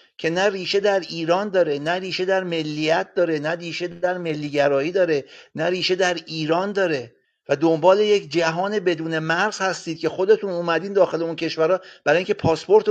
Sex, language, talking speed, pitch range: male, Persian, 170 wpm, 155-190 Hz